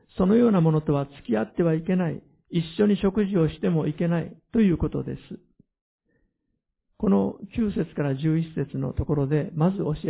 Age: 50-69